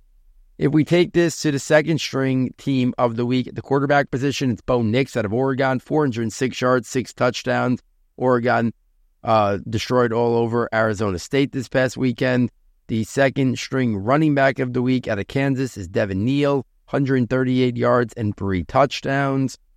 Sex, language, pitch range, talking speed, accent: male, English, 115-135 Hz, 160 wpm, American